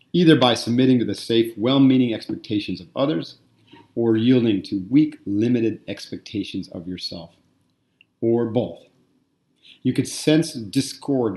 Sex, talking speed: male, 125 wpm